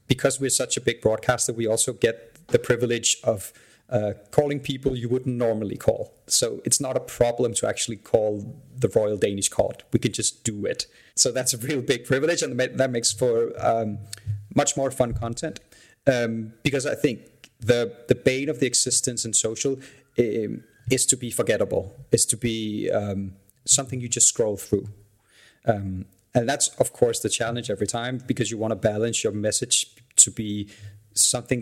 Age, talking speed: 30-49, 180 wpm